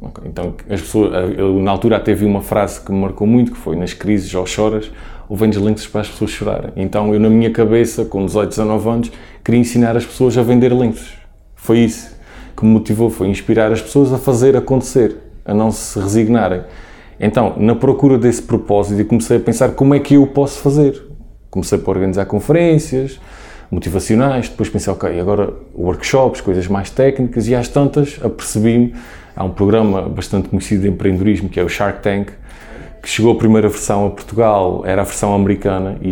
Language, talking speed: Portuguese, 190 wpm